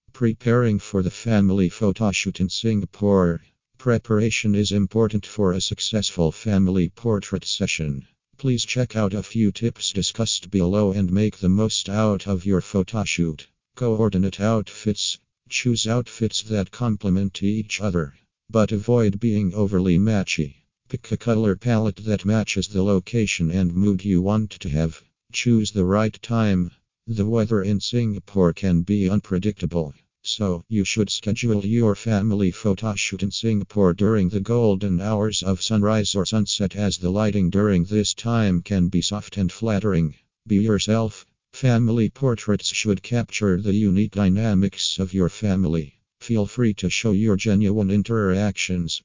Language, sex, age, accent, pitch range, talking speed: English, male, 50-69, American, 95-110 Hz, 145 wpm